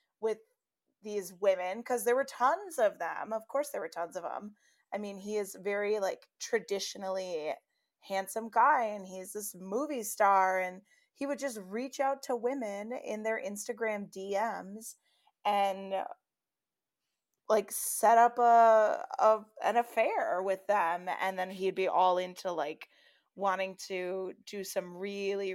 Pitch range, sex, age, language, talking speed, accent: 195-245 Hz, female, 20-39, English, 150 wpm, American